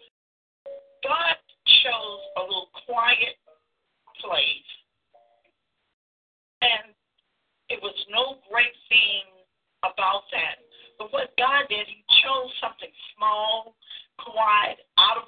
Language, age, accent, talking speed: English, 50-69, American, 100 wpm